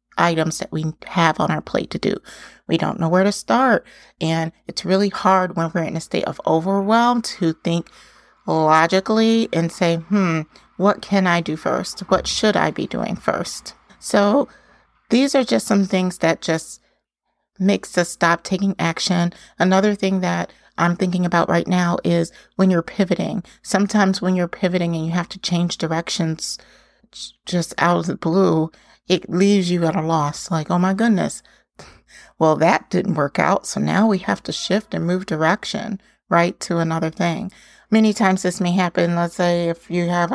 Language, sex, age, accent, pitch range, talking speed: English, female, 30-49, American, 170-195 Hz, 180 wpm